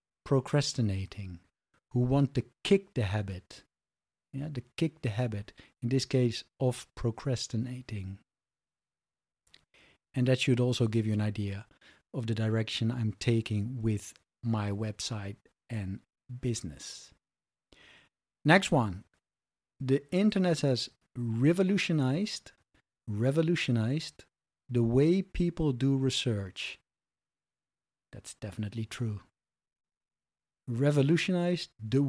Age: 50-69